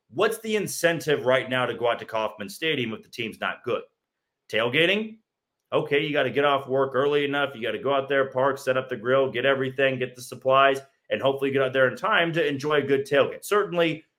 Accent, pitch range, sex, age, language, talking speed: American, 135-185 Hz, male, 30-49, English, 235 wpm